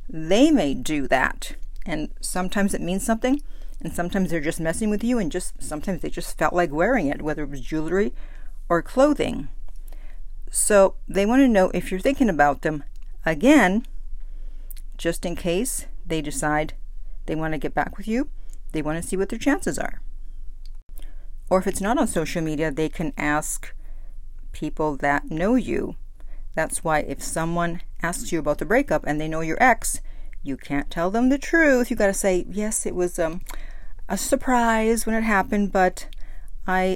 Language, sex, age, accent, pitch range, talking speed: English, female, 50-69, American, 155-200 Hz, 180 wpm